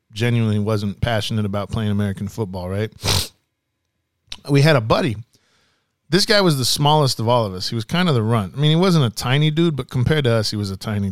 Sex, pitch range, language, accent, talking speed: male, 110-145 Hz, English, American, 225 wpm